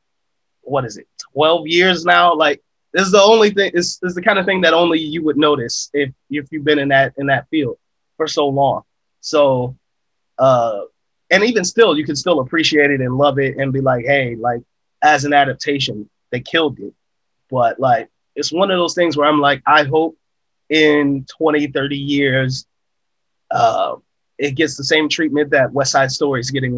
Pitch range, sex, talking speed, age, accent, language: 130-155 Hz, male, 195 wpm, 30-49, American, English